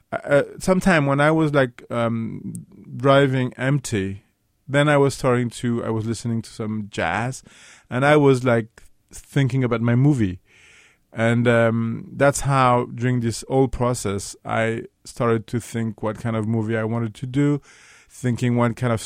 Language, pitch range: English, 115-140 Hz